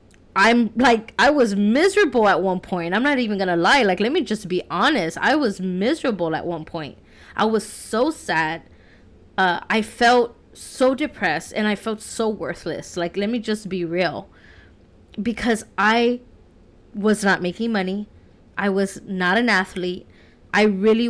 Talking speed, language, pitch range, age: 165 wpm, English, 175-215 Hz, 20-39